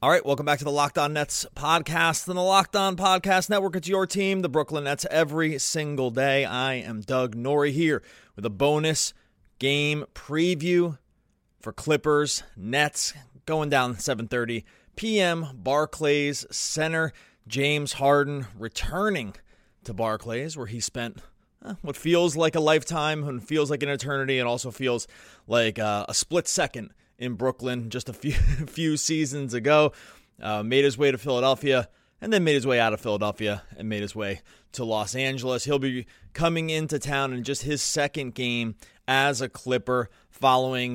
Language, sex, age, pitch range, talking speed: English, male, 30-49, 115-150 Hz, 165 wpm